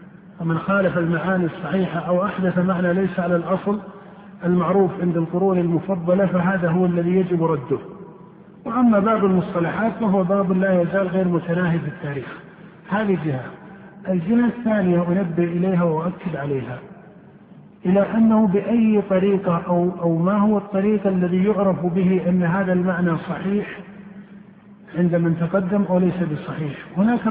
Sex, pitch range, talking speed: male, 175-195 Hz, 130 wpm